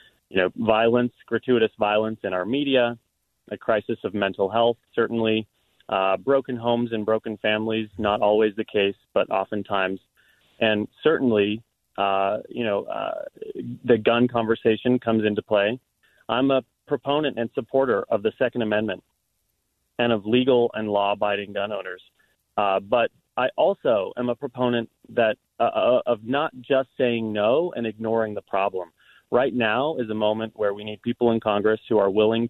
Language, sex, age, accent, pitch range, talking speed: English, male, 30-49, American, 105-125 Hz, 160 wpm